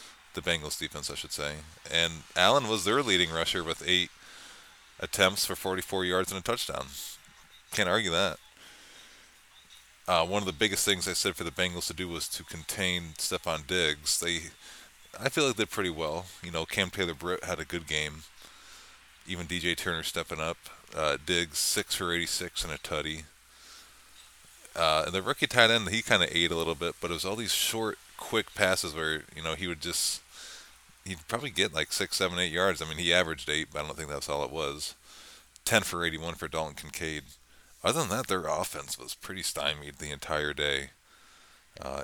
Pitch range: 75-90 Hz